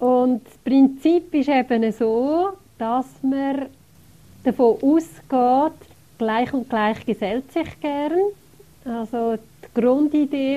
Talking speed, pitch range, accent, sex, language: 110 wpm, 220-255 Hz, Swiss, female, German